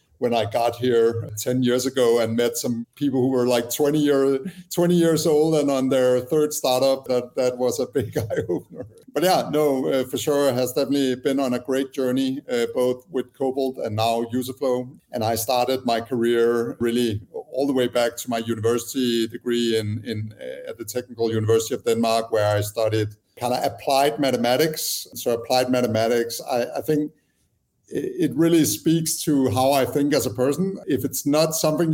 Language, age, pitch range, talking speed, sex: English, 50-69, 120-145 Hz, 190 wpm, male